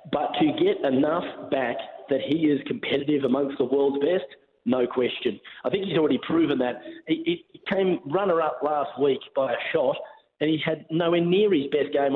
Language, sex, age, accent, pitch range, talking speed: English, male, 30-49, Australian, 145-230 Hz, 190 wpm